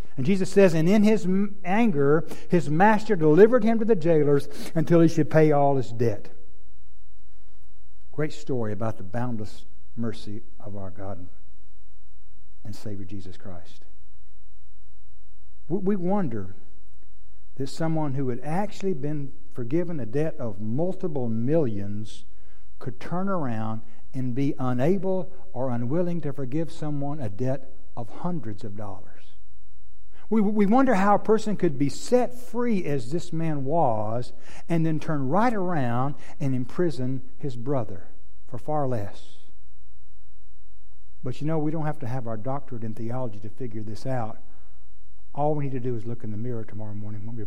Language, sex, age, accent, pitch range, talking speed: English, male, 60-79, American, 95-150 Hz, 150 wpm